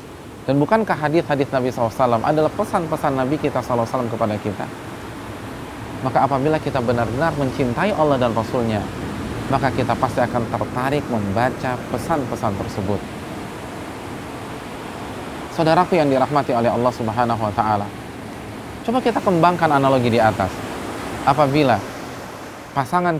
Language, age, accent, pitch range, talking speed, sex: Indonesian, 30-49, native, 115-155 Hz, 125 wpm, male